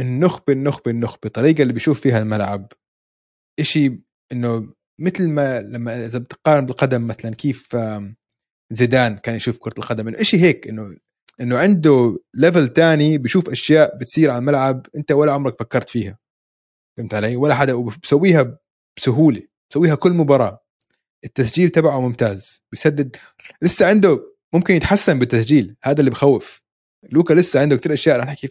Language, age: Arabic, 20-39